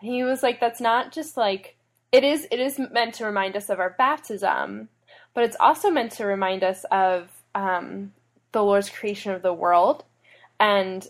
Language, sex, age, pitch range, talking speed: English, female, 10-29, 185-230 Hz, 185 wpm